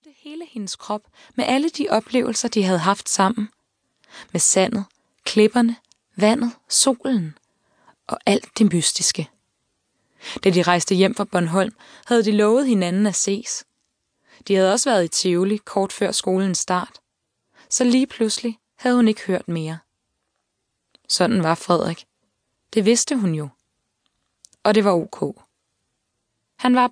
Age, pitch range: 20-39, 180-235 Hz